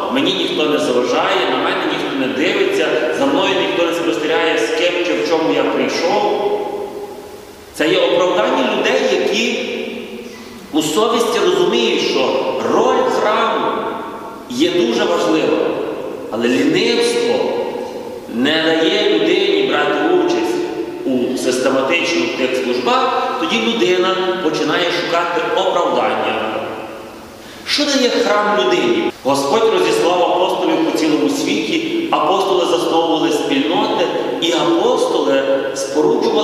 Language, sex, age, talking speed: Ukrainian, male, 40-59, 110 wpm